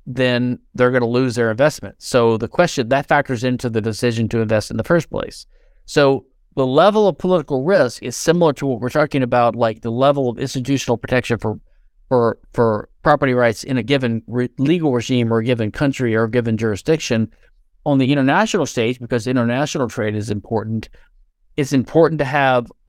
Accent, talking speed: American, 190 wpm